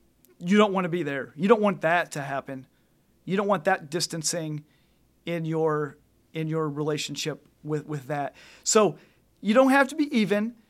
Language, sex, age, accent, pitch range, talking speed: English, male, 30-49, American, 165-210 Hz, 180 wpm